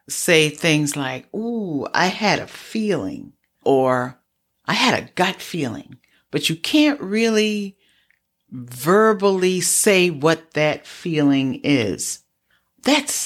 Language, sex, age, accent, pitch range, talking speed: English, female, 50-69, American, 135-195 Hz, 115 wpm